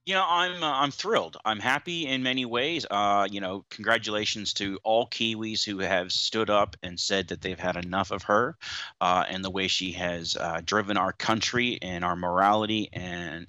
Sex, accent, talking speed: male, American, 195 wpm